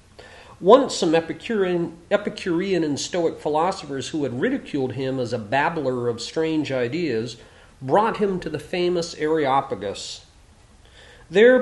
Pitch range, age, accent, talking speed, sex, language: 125-190 Hz, 50-69, American, 125 wpm, male, English